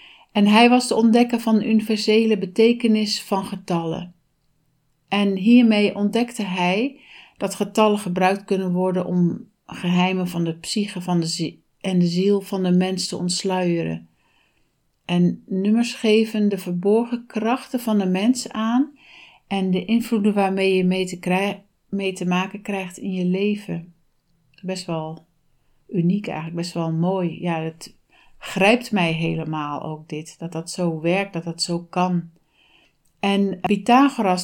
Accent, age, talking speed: Dutch, 60-79, 140 wpm